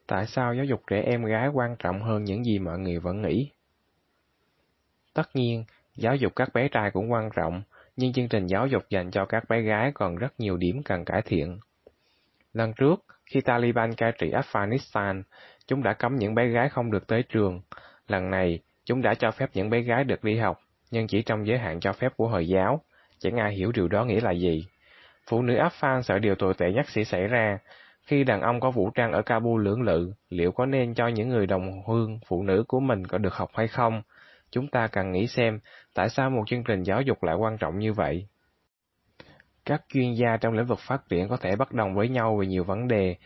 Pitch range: 95-120 Hz